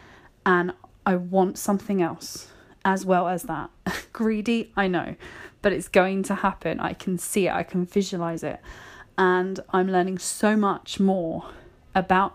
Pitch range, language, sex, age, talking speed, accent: 190-225 Hz, English, female, 30-49, 155 wpm, British